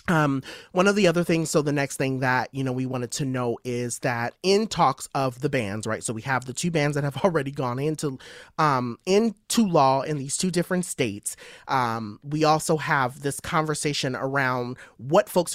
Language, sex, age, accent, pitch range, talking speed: English, male, 30-49, American, 130-165 Hz, 205 wpm